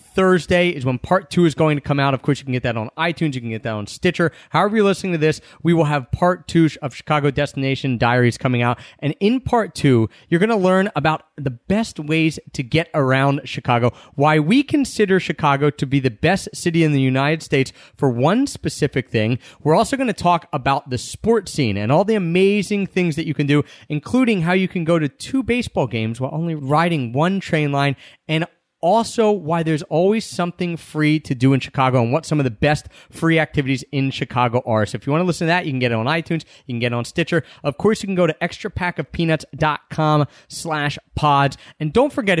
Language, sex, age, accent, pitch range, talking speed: English, male, 30-49, American, 140-180 Hz, 225 wpm